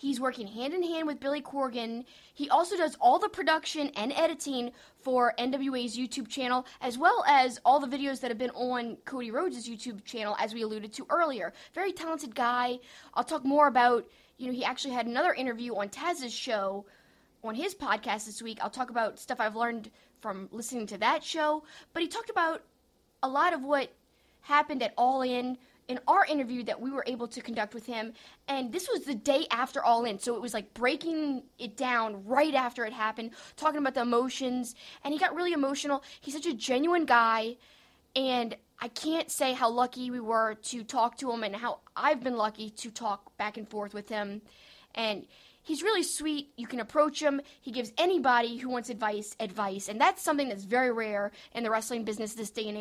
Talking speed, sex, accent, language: 200 wpm, female, American, English